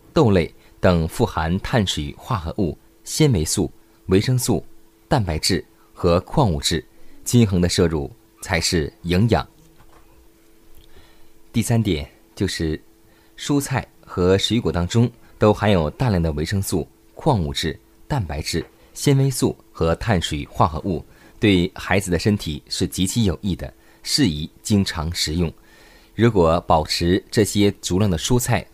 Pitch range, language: 85-110 Hz, Chinese